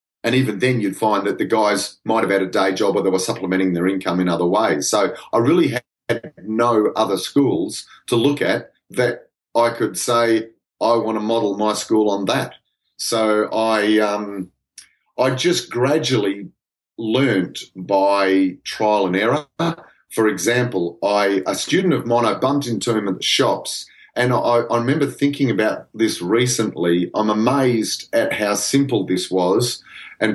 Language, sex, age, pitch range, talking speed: English, male, 30-49, 100-130 Hz, 170 wpm